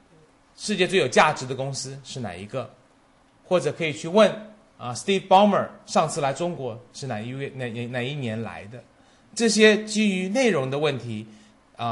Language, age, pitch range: Chinese, 30-49, 120-180 Hz